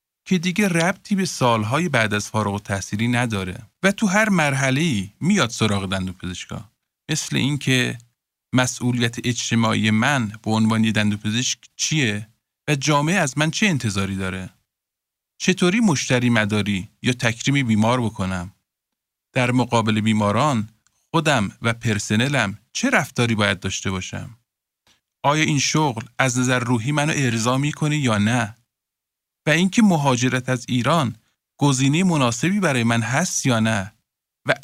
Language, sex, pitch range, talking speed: Persian, male, 105-150 Hz, 130 wpm